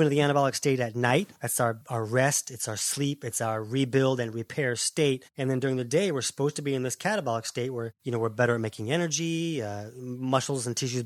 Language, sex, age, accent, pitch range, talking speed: English, male, 30-49, American, 120-155 Hz, 240 wpm